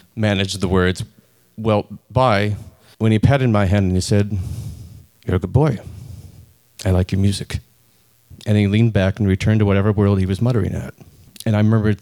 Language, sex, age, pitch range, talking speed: English, male, 40-59, 95-115 Hz, 185 wpm